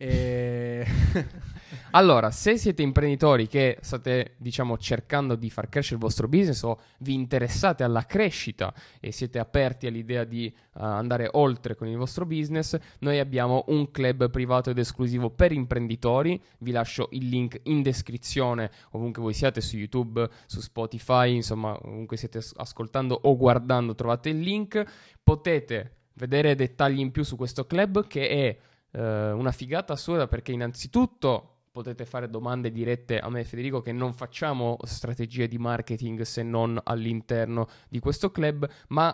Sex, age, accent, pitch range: male, 20-39, native, 115-135 Hz